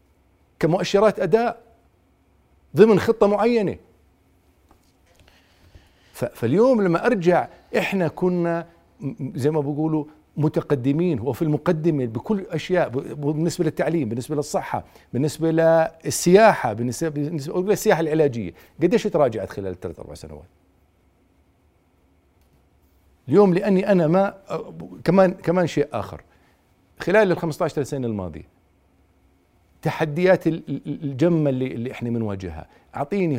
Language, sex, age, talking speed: Arabic, male, 50-69, 95 wpm